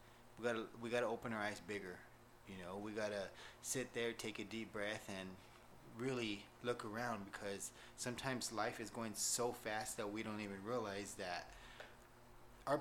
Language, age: English, 20-39